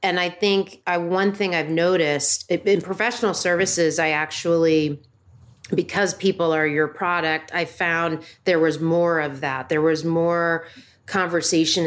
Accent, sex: American, female